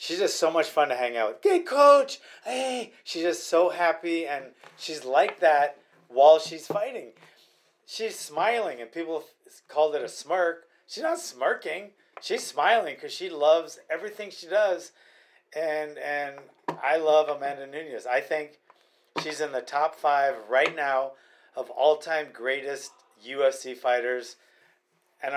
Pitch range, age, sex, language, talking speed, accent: 140-185 Hz, 30-49, male, English, 150 wpm, American